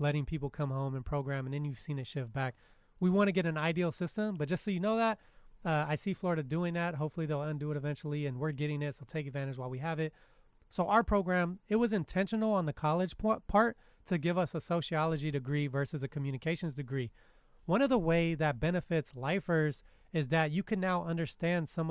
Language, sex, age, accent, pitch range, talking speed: English, male, 30-49, American, 145-180 Hz, 225 wpm